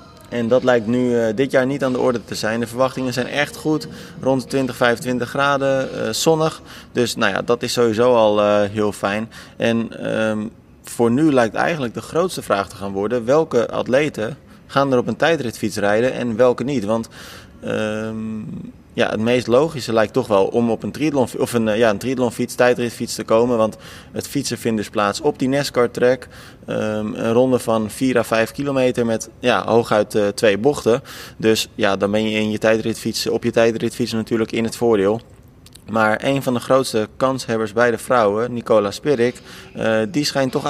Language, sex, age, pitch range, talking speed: Dutch, male, 20-39, 110-130 Hz, 185 wpm